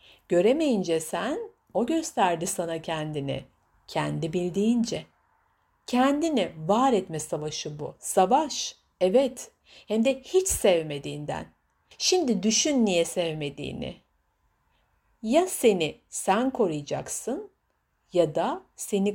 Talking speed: 95 wpm